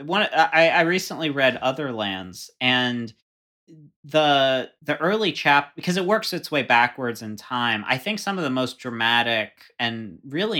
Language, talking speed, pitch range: English, 165 wpm, 110-130 Hz